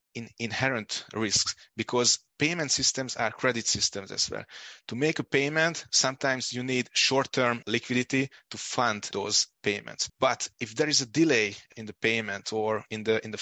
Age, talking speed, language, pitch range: 30-49, 170 wpm, English, 105-125 Hz